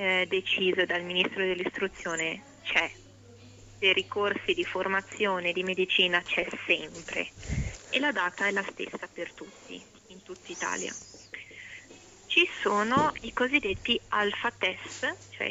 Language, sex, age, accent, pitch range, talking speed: Italian, female, 20-39, native, 185-230 Hz, 125 wpm